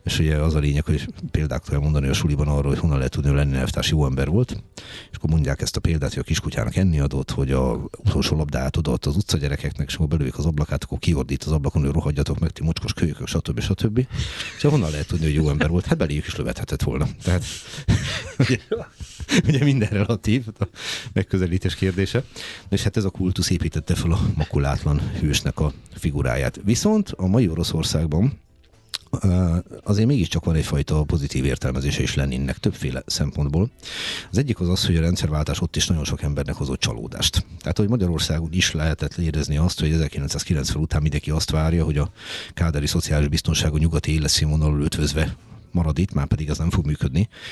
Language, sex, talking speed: Hungarian, male, 185 wpm